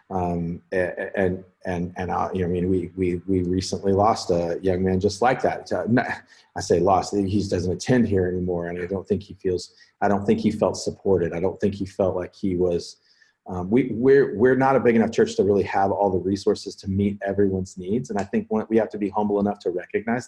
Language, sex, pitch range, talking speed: English, male, 95-115 Hz, 240 wpm